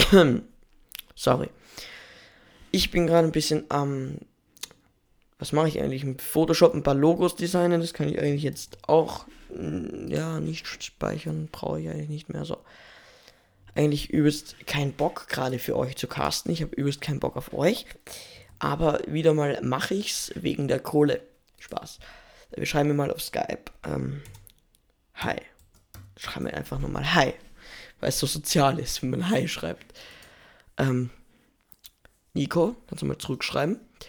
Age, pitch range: 20-39, 135-165 Hz